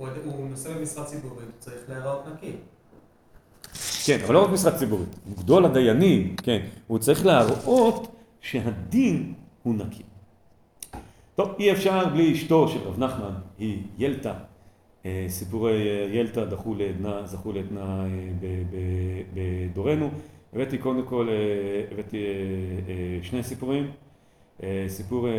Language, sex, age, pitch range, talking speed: Hebrew, male, 40-59, 105-150 Hz, 110 wpm